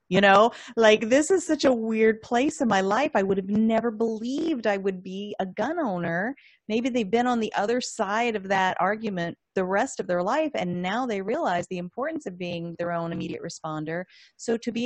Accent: American